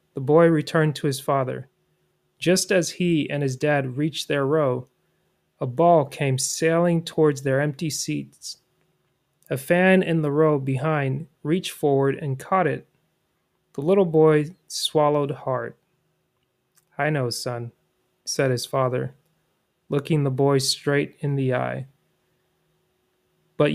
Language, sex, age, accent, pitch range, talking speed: English, male, 30-49, American, 135-160 Hz, 135 wpm